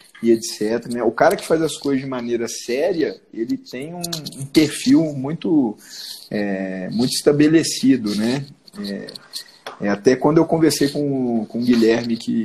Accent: Brazilian